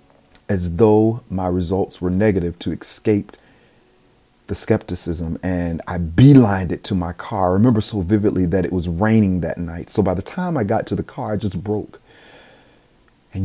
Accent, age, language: American, 40-59, English